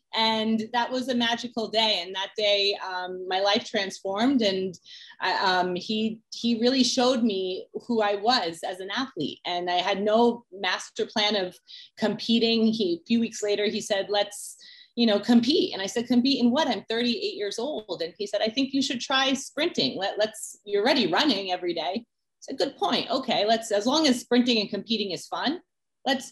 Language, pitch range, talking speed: English, 195-245 Hz, 200 wpm